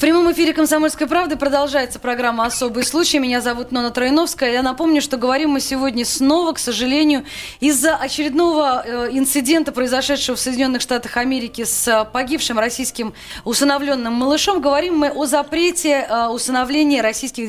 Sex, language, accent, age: female, Russian, native, 20-39